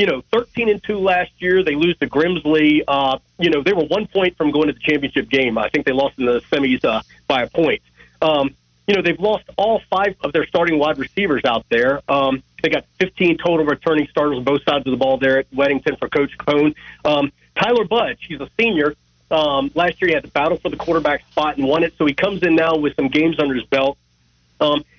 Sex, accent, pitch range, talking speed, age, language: male, American, 140-180 Hz, 245 wpm, 40-59, English